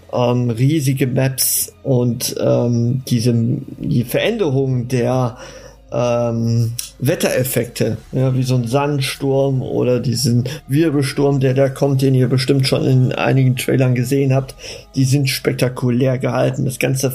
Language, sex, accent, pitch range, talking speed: German, male, German, 125-150 Hz, 130 wpm